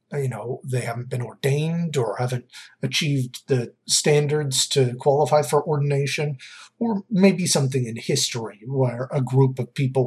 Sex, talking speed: male, 150 wpm